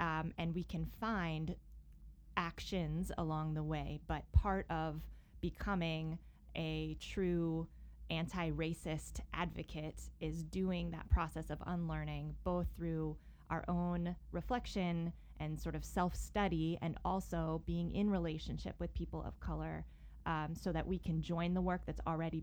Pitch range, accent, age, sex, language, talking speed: 155-180 Hz, American, 20-39, female, English, 135 wpm